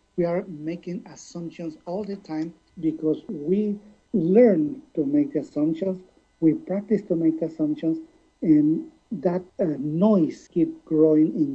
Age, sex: 50-69, male